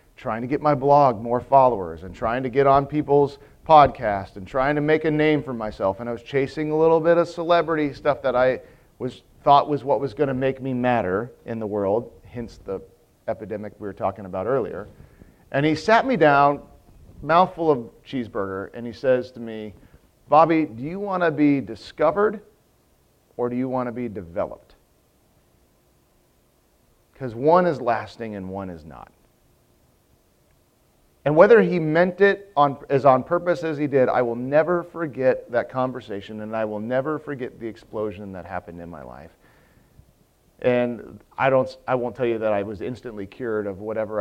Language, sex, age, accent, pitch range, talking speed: English, male, 40-59, American, 110-145 Hz, 180 wpm